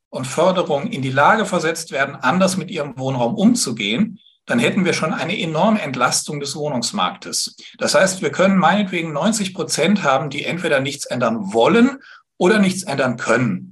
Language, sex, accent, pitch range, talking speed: German, male, German, 135-190 Hz, 165 wpm